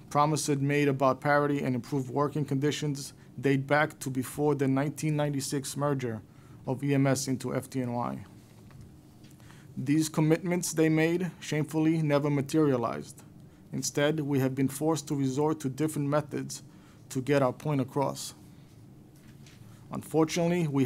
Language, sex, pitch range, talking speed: English, male, 135-155 Hz, 125 wpm